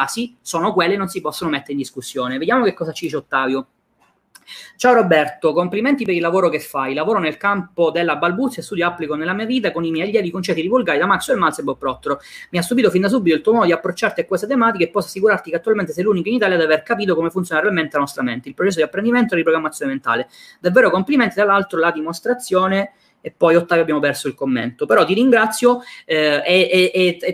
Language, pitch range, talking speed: Italian, 150-195 Hz, 235 wpm